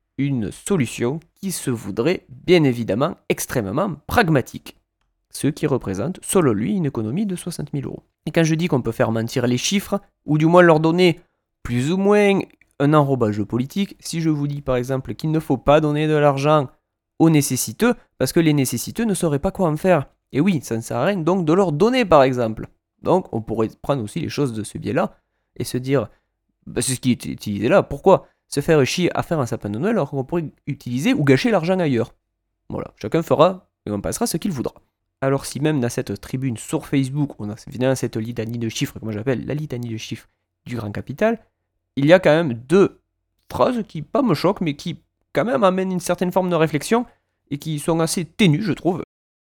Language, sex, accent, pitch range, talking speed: French, male, French, 120-175 Hz, 215 wpm